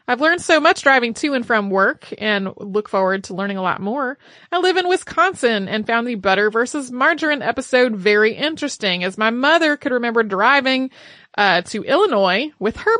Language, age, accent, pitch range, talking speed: English, 30-49, American, 210-280 Hz, 190 wpm